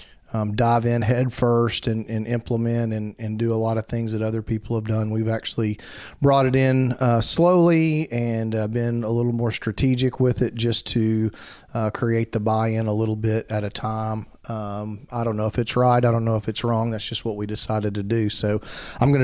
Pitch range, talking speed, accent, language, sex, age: 110-125 Hz, 220 wpm, American, English, male, 40-59